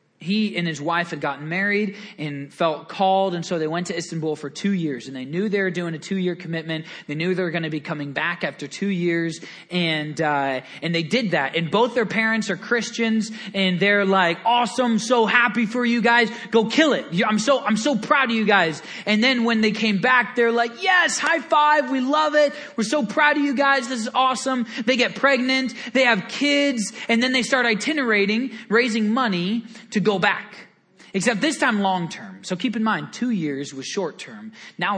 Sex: male